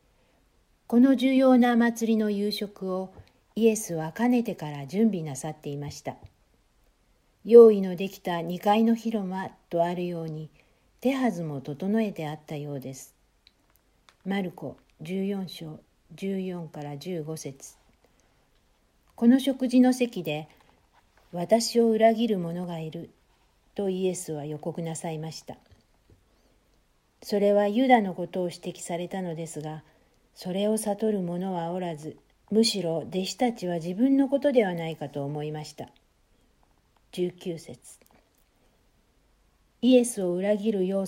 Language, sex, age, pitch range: Japanese, female, 60-79, 165-215 Hz